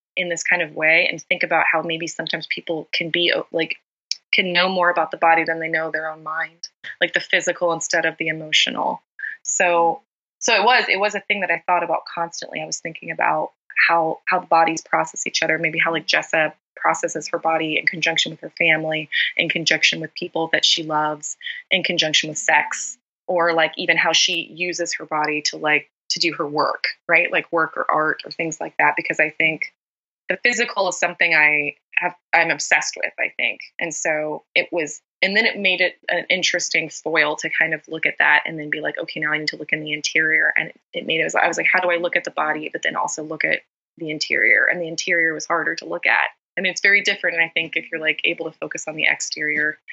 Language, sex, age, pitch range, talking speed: English, female, 20-39, 155-175 Hz, 235 wpm